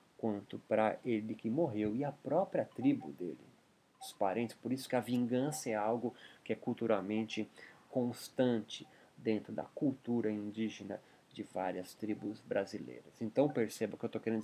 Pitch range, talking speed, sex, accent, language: 110-140 Hz, 160 wpm, male, Brazilian, Portuguese